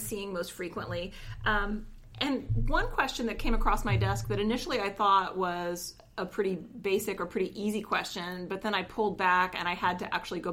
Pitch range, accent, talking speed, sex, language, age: 190-245 Hz, American, 200 wpm, female, English, 30-49